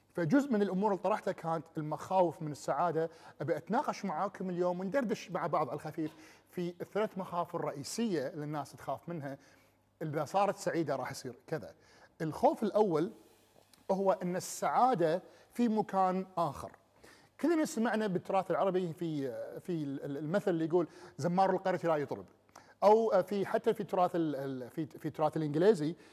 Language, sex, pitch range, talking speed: Arabic, male, 155-195 Hz, 140 wpm